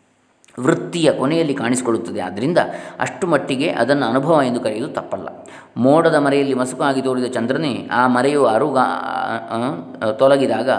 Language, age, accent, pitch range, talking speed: Kannada, 20-39, native, 115-140 Hz, 110 wpm